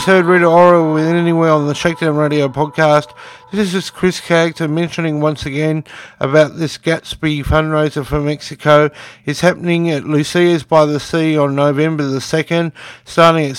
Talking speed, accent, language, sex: 160 wpm, Australian, English, male